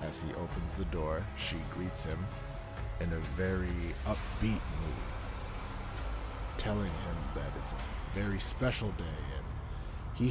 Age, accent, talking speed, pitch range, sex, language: 30-49, American, 135 wpm, 85-115 Hz, male, English